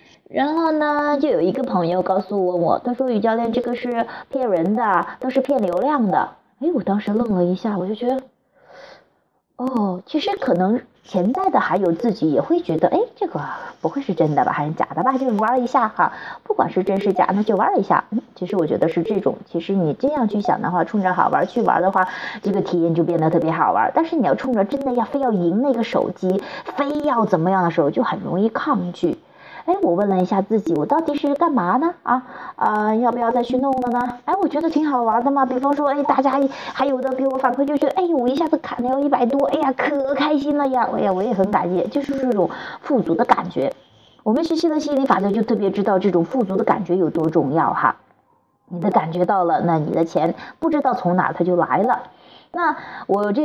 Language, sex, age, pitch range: Chinese, female, 30-49, 190-275 Hz